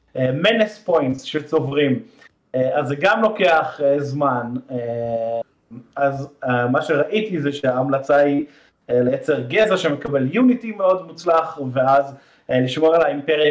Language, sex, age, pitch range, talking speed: Hebrew, male, 30-49, 125-160 Hz, 105 wpm